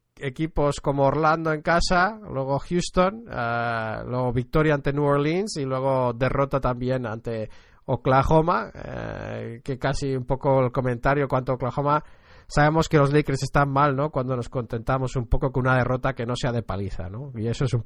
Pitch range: 125-145 Hz